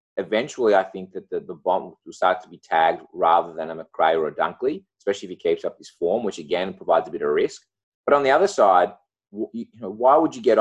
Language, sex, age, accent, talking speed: English, male, 20-39, Australian, 250 wpm